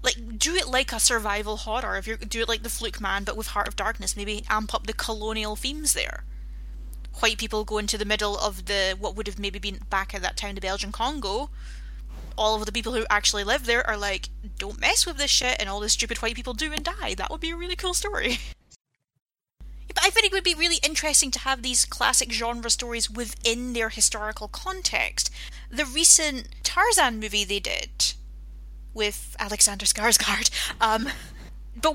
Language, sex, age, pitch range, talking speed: English, female, 10-29, 210-260 Hz, 205 wpm